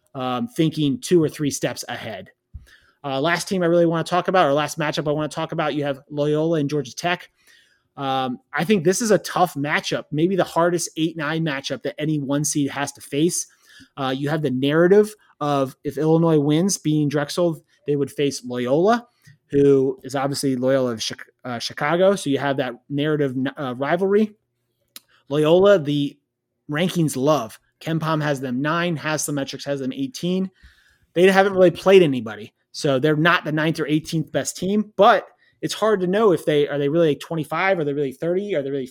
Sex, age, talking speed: male, 30-49, 190 wpm